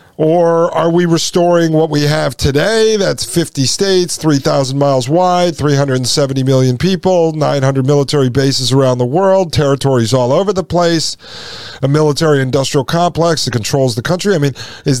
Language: English